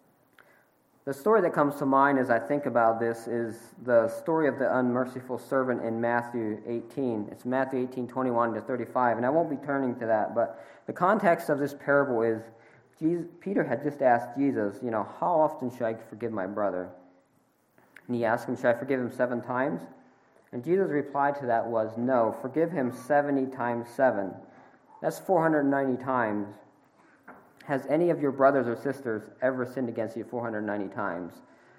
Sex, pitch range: male, 115-140 Hz